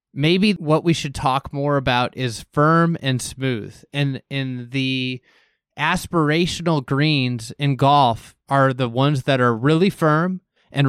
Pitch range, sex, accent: 135-165 Hz, male, American